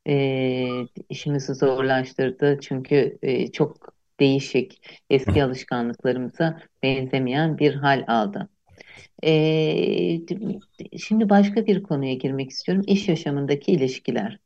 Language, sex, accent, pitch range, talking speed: Turkish, female, native, 140-190 Hz, 95 wpm